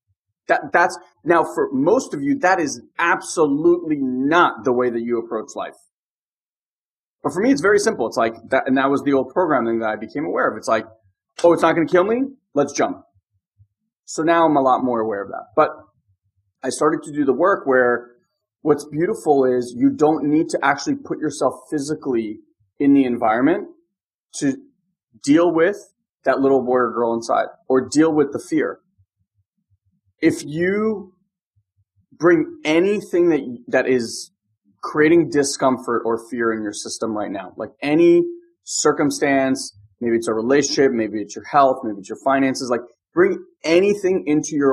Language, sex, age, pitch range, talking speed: English, male, 30-49, 115-165 Hz, 175 wpm